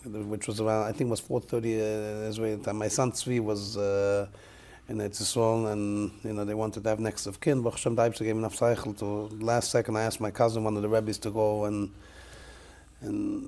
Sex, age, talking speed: male, 30-49, 240 wpm